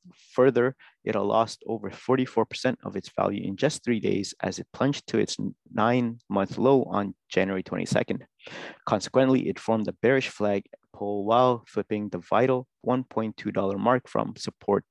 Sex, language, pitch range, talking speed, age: male, English, 100-130 Hz, 155 wpm, 30-49